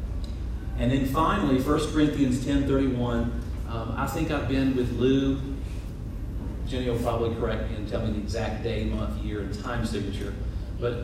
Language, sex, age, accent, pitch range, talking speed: English, male, 40-59, American, 105-130 Hz, 160 wpm